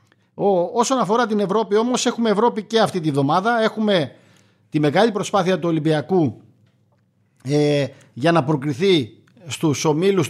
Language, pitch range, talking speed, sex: Greek, 150-195 Hz, 135 wpm, male